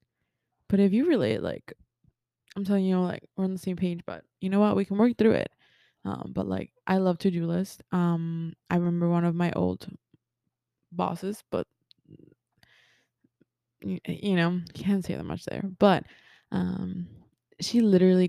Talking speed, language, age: 165 wpm, English, 20-39